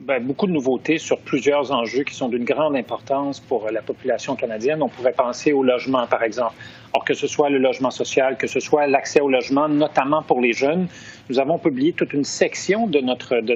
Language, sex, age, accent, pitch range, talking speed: French, male, 40-59, Canadian, 135-165 Hz, 210 wpm